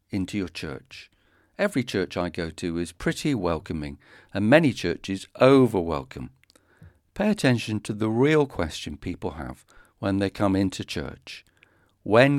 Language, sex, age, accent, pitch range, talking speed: English, male, 50-69, British, 90-125 Hz, 145 wpm